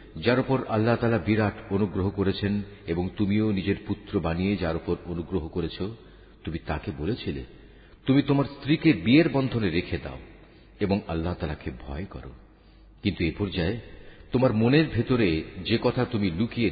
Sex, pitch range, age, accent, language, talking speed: male, 85-120 Hz, 50-69, native, Bengali, 145 wpm